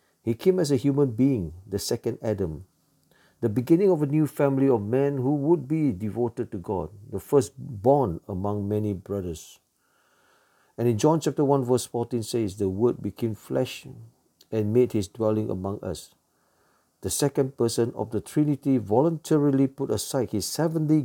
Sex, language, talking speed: male, English, 165 wpm